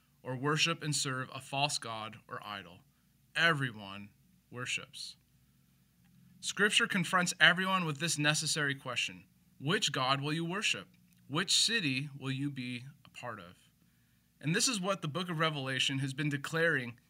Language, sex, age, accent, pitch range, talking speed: English, male, 20-39, American, 135-170 Hz, 145 wpm